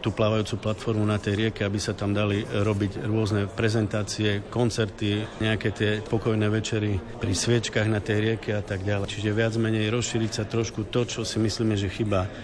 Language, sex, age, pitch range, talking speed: Slovak, male, 50-69, 105-115 Hz, 180 wpm